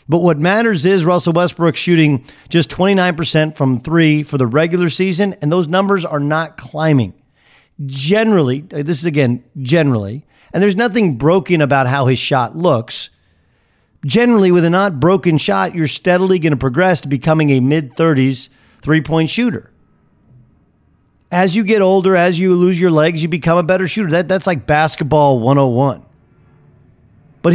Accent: American